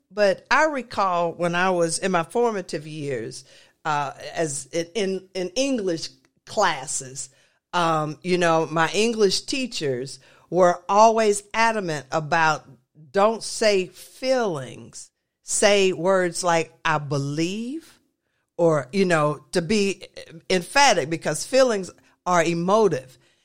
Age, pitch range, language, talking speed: 50-69, 170-270 Hz, English, 115 wpm